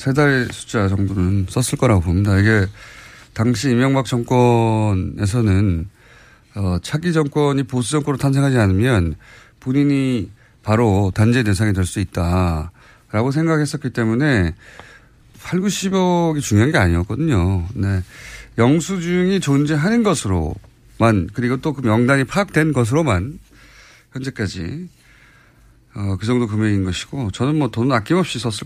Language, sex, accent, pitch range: Korean, male, native, 105-140 Hz